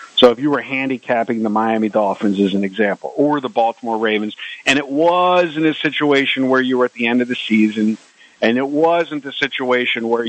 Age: 50-69